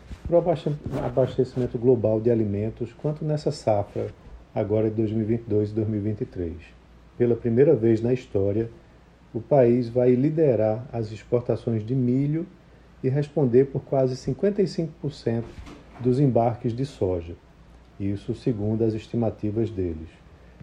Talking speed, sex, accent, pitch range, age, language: 120 wpm, male, Brazilian, 110-135 Hz, 40-59, Portuguese